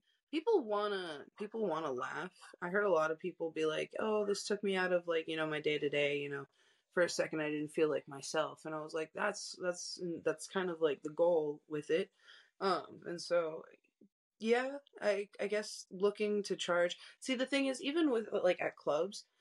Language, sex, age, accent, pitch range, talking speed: English, female, 20-39, American, 150-210 Hz, 220 wpm